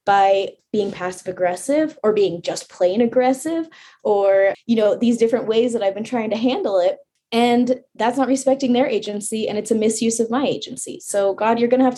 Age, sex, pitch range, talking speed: 20-39, female, 210-265 Hz, 205 wpm